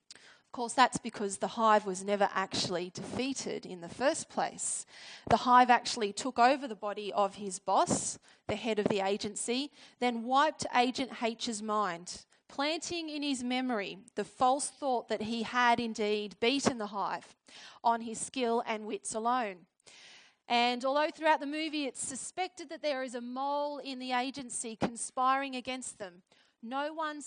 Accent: Australian